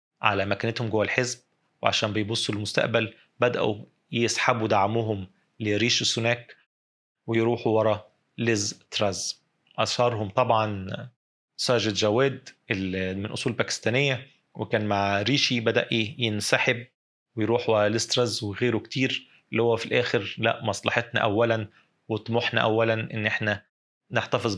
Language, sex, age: Arabic, male, 30-49